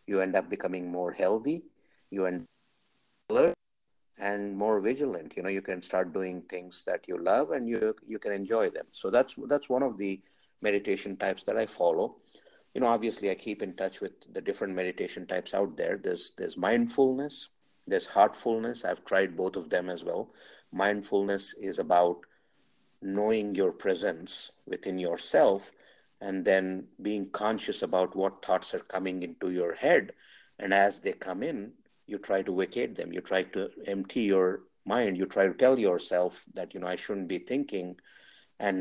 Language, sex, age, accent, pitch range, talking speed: English, male, 50-69, Indian, 95-115 Hz, 175 wpm